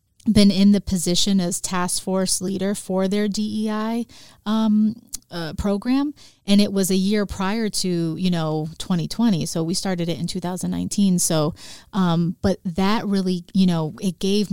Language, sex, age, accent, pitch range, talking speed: English, female, 30-49, American, 170-195 Hz, 160 wpm